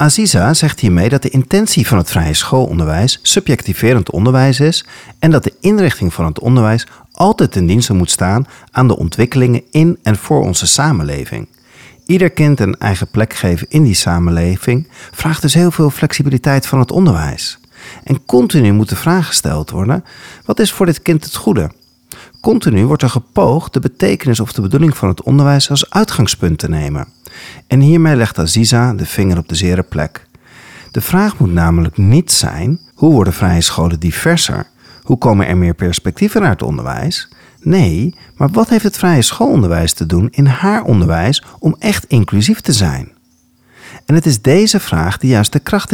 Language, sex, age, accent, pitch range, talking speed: Dutch, male, 40-59, Dutch, 95-155 Hz, 175 wpm